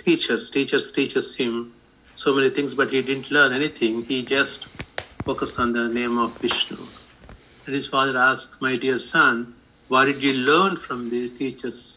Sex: male